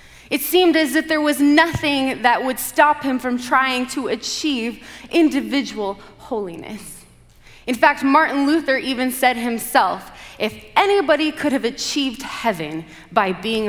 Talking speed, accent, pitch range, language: 140 wpm, American, 195-265 Hz, English